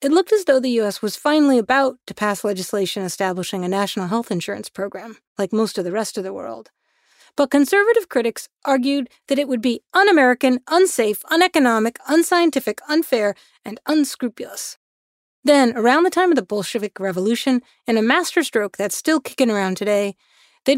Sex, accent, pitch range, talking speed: female, American, 190-260 Hz, 170 wpm